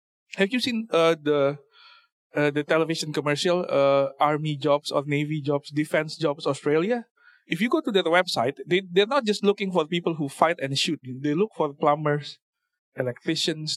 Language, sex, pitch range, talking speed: English, male, 145-185 Hz, 180 wpm